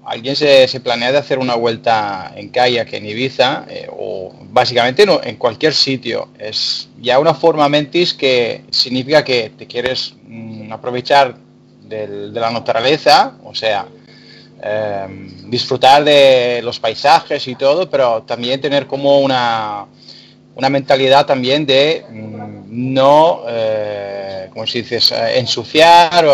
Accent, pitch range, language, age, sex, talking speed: Spanish, 115-145 Hz, Spanish, 30-49, male, 140 wpm